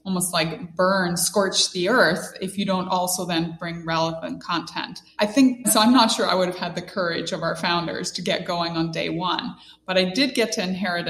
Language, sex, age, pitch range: English, female, 20-39, 170-195 Hz